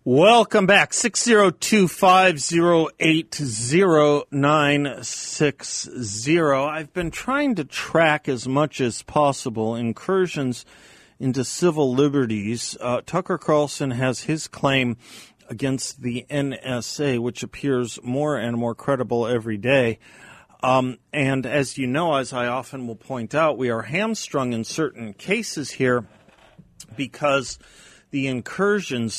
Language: English